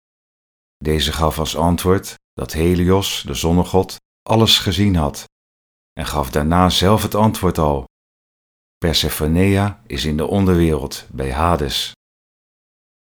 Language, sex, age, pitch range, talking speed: English, male, 40-59, 75-100 Hz, 115 wpm